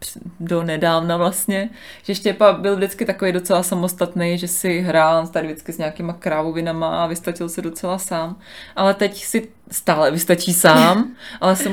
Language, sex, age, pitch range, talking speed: Czech, female, 20-39, 170-200 Hz, 155 wpm